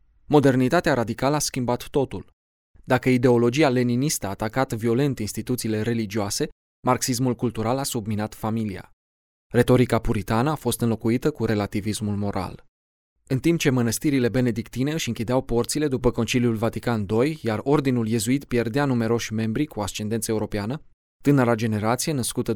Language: Romanian